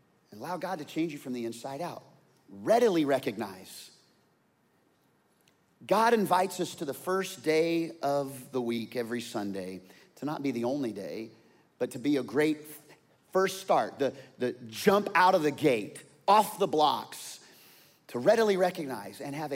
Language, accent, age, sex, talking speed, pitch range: English, American, 30-49, male, 160 wpm, 125-180 Hz